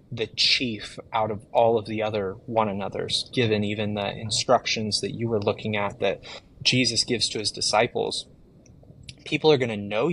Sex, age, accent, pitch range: male, 20-39, American, 105-120 Hz